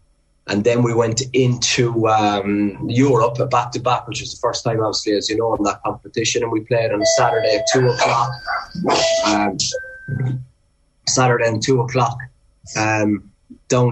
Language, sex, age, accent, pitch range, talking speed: English, male, 20-39, British, 105-125 Hz, 150 wpm